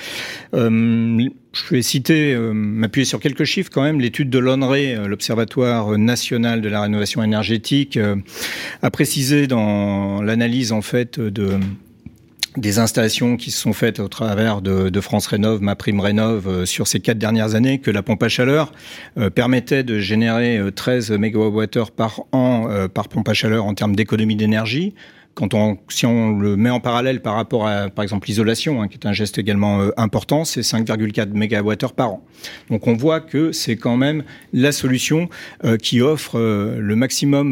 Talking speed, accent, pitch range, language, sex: 180 wpm, French, 105-135 Hz, French, male